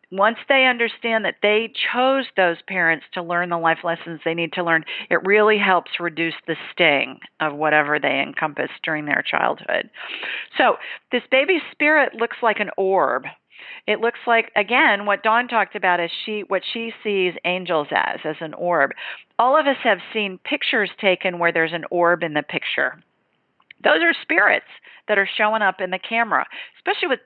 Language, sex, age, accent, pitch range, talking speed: English, female, 40-59, American, 175-235 Hz, 180 wpm